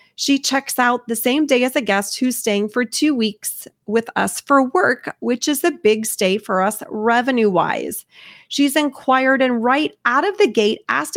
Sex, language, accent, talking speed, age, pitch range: female, English, American, 190 wpm, 30-49, 210-270 Hz